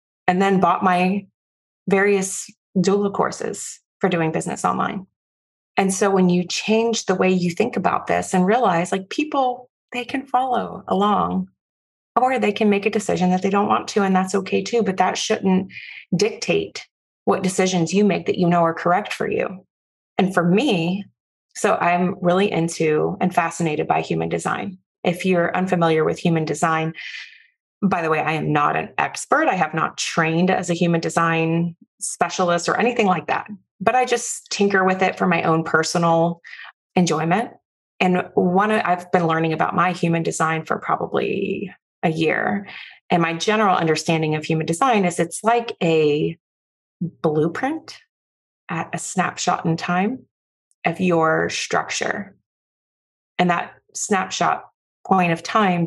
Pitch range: 165-200 Hz